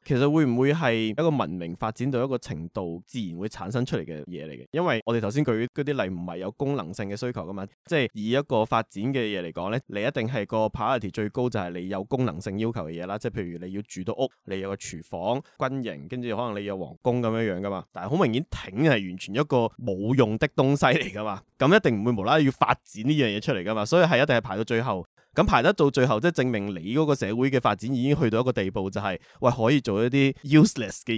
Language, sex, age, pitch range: Chinese, male, 20-39, 100-130 Hz